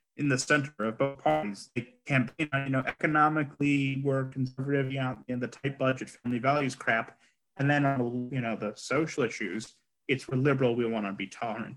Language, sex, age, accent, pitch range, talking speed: English, male, 30-49, American, 120-140 Hz, 190 wpm